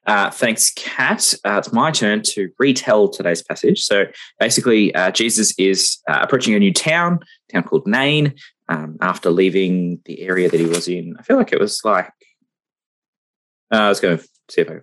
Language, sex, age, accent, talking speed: English, male, 20-39, Australian, 200 wpm